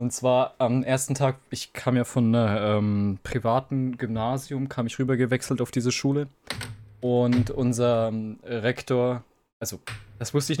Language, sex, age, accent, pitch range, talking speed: German, male, 20-39, German, 125-180 Hz, 155 wpm